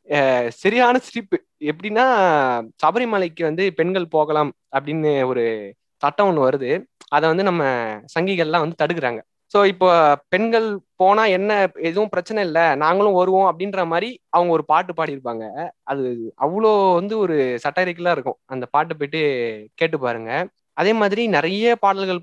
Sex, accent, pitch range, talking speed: male, native, 145-195 Hz, 130 wpm